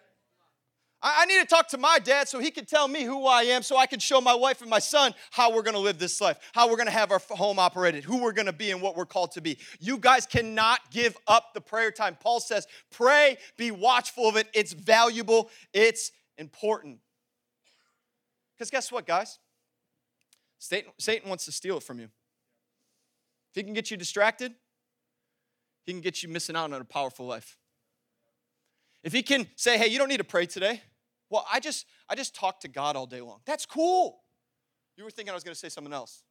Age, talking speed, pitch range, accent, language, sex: 30-49, 210 wpm, 185-275 Hz, American, English, male